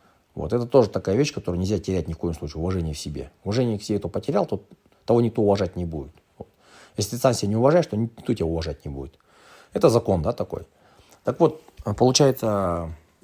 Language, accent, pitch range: Russian, native, 85-115 Hz